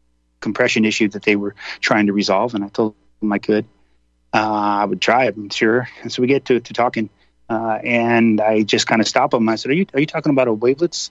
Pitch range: 100-125 Hz